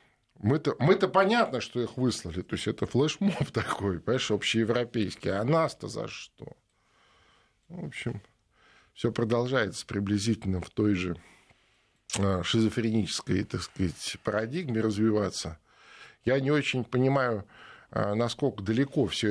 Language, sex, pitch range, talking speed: Russian, male, 100-130 Hz, 115 wpm